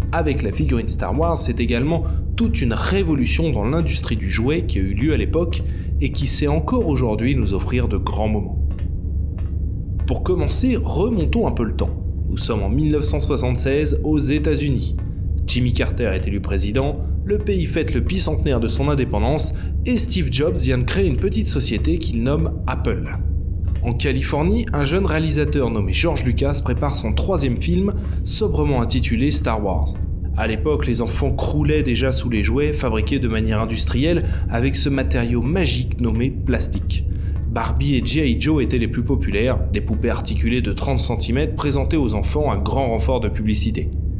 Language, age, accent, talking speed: French, 20-39, French, 170 wpm